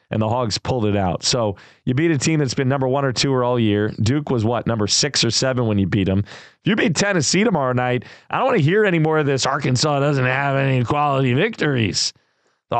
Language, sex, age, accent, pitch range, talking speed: English, male, 30-49, American, 120-160 Hz, 245 wpm